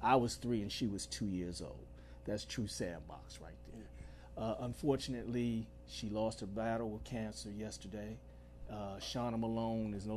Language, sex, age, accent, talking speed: English, male, 40-59, American, 165 wpm